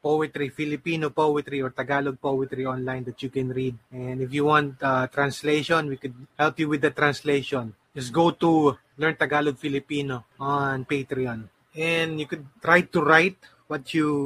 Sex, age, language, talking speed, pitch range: male, 20-39, Filipino, 175 wpm, 135-155 Hz